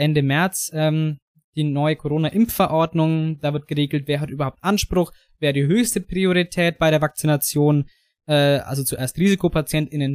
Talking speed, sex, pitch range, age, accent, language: 140 wpm, male, 145-175 Hz, 20-39, German, German